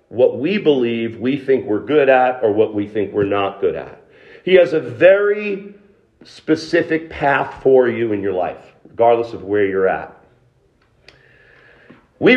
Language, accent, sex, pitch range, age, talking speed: English, American, male, 110-175 Hz, 40-59, 160 wpm